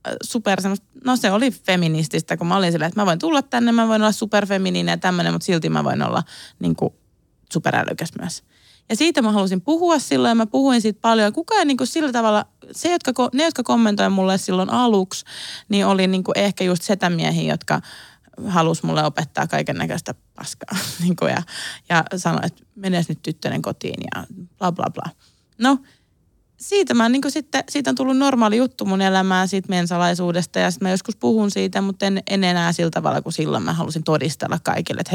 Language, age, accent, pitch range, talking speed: Finnish, 20-39, native, 160-220 Hz, 190 wpm